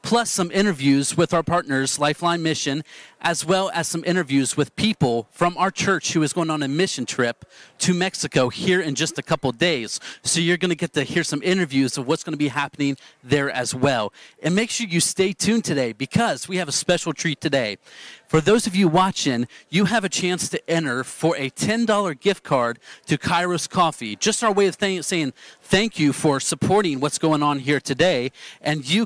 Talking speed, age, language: 210 wpm, 40-59, English